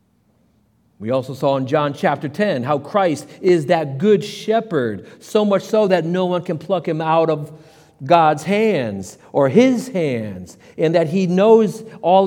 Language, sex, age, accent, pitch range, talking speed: English, male, 50-69, American, 145-200 Hz, 165 wpm